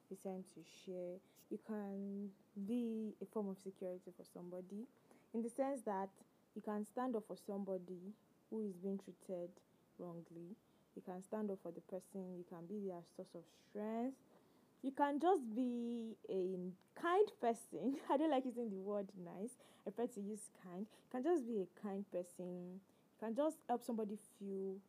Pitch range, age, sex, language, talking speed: 190-235 Hz, 20-39, female, English, 175 wpm